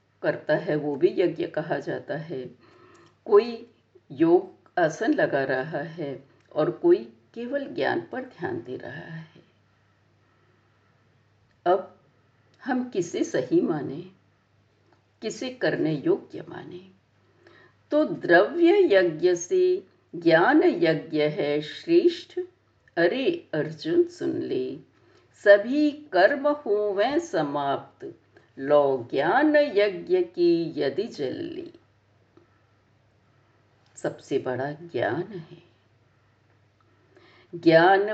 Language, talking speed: Hindi, 95 wpm